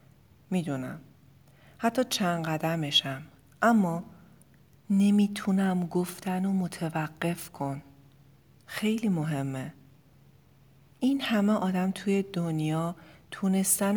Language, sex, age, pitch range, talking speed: Persian, female, 40-59, 145-195 Hz, 75 wpm